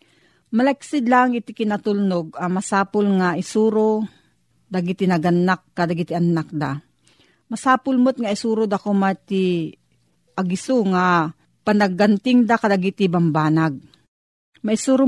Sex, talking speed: female, 105 wpm